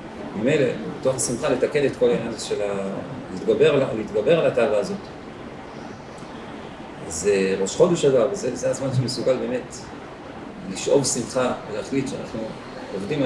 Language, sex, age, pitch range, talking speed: Hebrew, male, 40-59, 140-185 Hz, 135 wpm